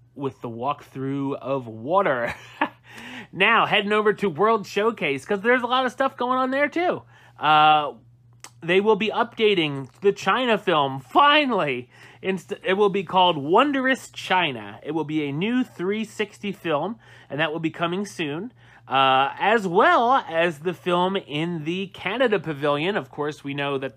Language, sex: English, male